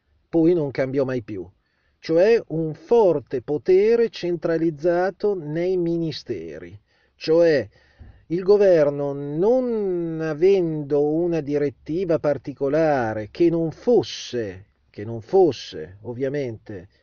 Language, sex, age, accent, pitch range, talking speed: Italian, male, 40-59, native, 120-170 Hz, 90 wpm